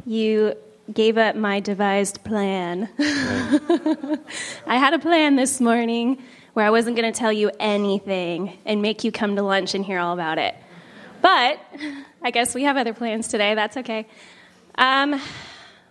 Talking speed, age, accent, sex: 160 wpm, 10-29, American, female